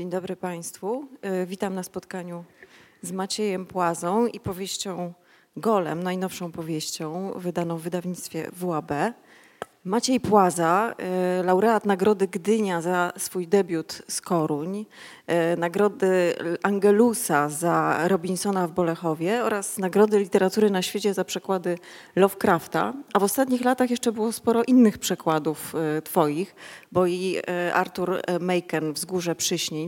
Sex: female